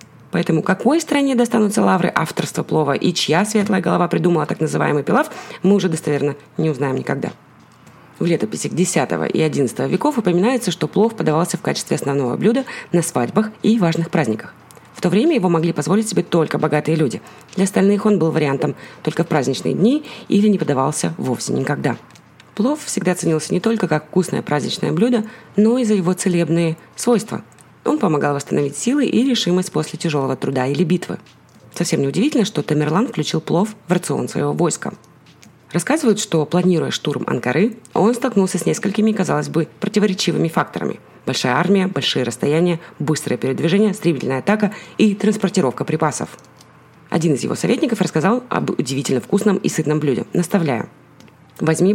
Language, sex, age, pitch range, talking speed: Russian, female, 30-49, 150-210 Hz, 160 wpm